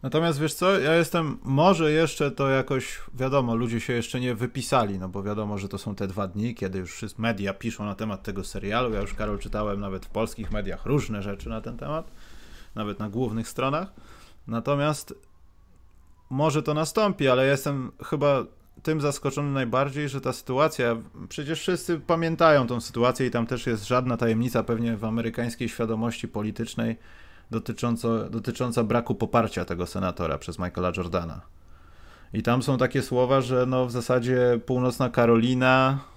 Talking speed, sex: 165 wpm, male